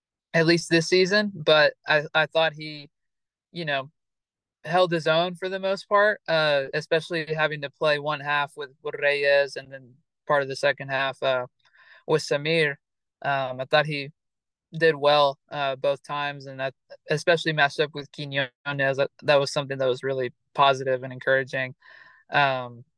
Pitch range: 140-170 Hz